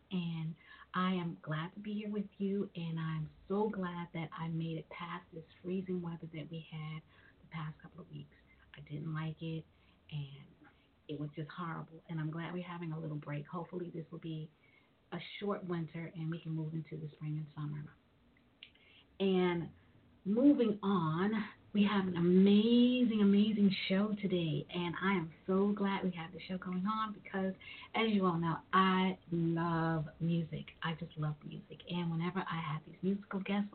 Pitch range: 160-195 Hz